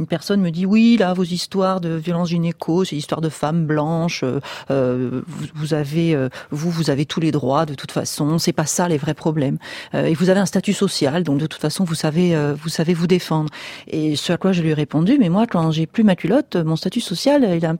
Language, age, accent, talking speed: French, 40-59, French, 260 wpm